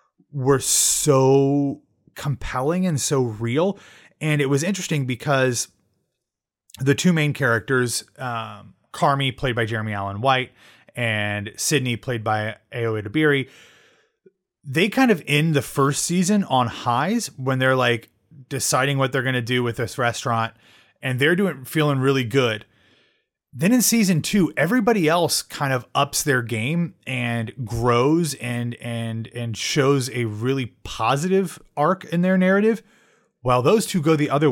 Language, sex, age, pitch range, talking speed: English, male, 30-49, 120-160 Hz, 150 wpm